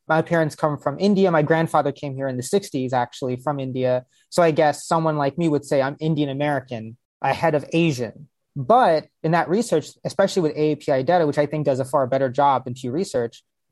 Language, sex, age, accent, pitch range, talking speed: English, male, 30-49, American, 145-190 Hz, 210 wpm